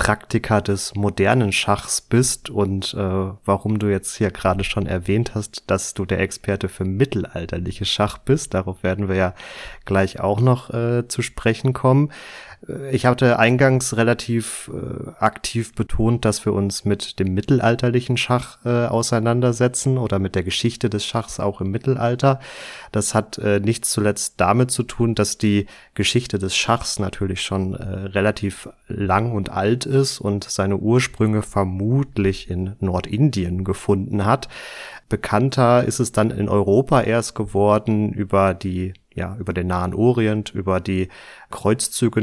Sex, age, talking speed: male, 30-49, 145 wpm